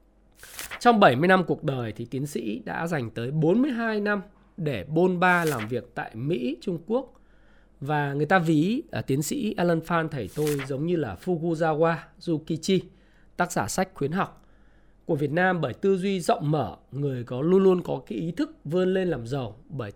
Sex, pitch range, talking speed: male, 130-180 Hz, 190 wpm